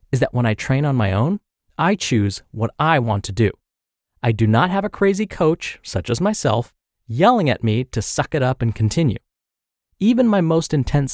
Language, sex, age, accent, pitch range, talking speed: English, male, 30-49, American, 115-175 Hz, 205 wpm